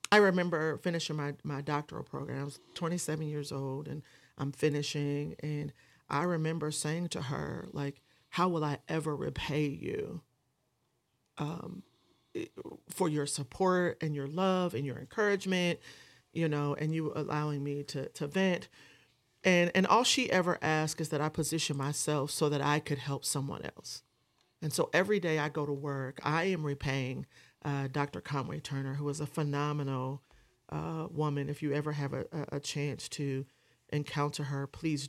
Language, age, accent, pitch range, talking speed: English, 40-59, American, 145-165 Hz, 165 wpm